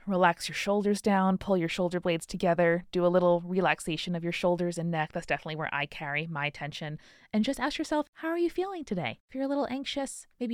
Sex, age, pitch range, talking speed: female, 20-39, 160-215 Hz, 230 wpm